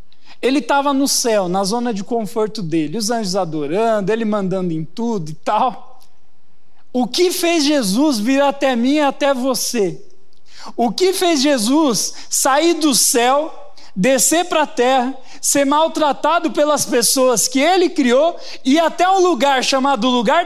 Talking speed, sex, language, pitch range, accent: 155 wpm, male, Portuguese, 235-290 Hz, Brazilian